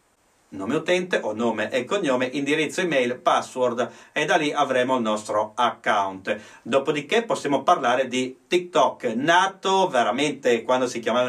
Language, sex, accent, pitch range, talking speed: Italian, male, native, 120-160 Hz, 140 wpm